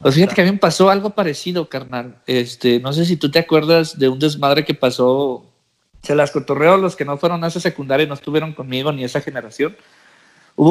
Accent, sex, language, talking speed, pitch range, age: Mexican, male, Spanish, 225 wpm, 140-180 Hz, 50-69